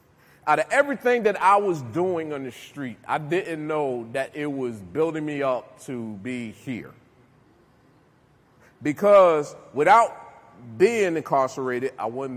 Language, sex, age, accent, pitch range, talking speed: English, male, 30-49, American, 125-175 Hz, 135 wpm